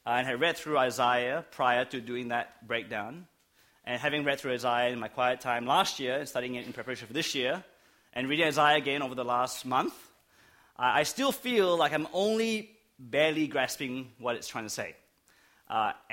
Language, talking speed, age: English, 195 wpm, 30-49